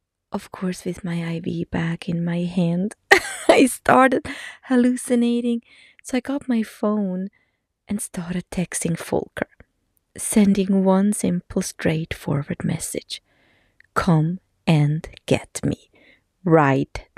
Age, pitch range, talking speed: 20-39, 175-230 Hz, 110 wpm